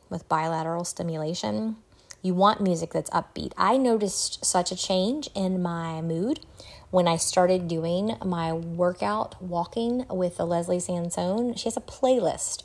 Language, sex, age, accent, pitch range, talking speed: English, female, 30-49, American, 165-190 Hz, 145 wpm